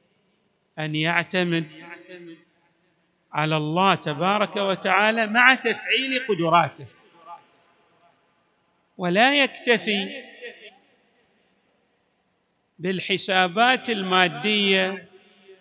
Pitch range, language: 170-210 Hz, Arabic